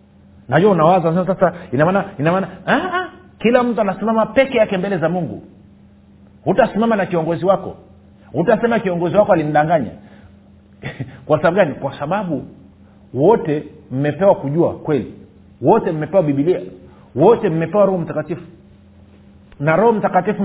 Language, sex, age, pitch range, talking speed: Swahili, male, 50-69, 115-190 Hz, 135 wpm